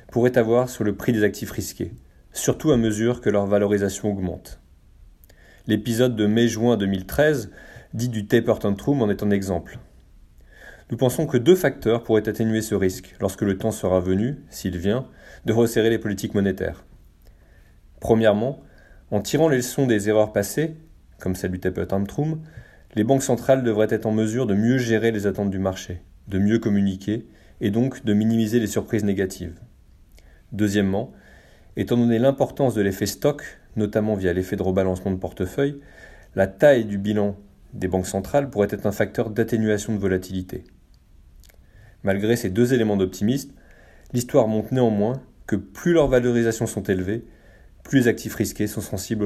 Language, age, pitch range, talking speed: French, 30-49, 95-115 Hz, 160 wpm